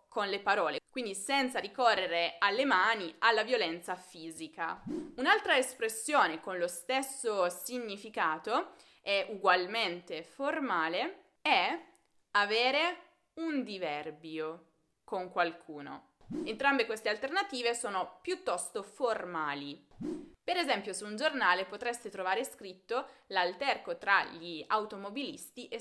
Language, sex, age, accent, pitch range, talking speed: Italian, female, 20-39, native, 180-265 Hz, 105 wpm